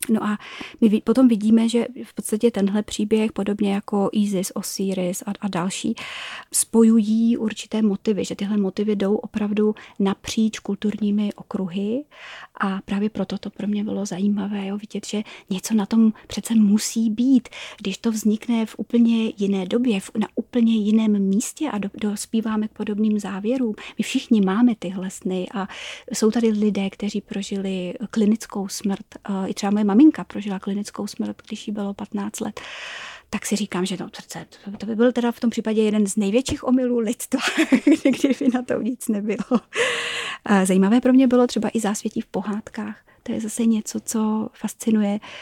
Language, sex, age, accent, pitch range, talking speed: Czech, female, 30-49, native, 200-230 Hz, 165 wpm